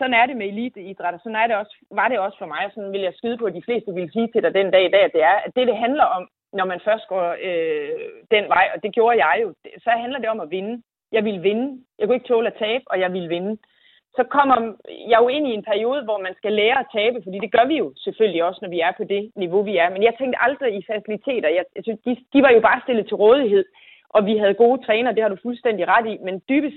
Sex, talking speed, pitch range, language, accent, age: female, 275 wpm, 200-255 Hz, Danish, native, 30-49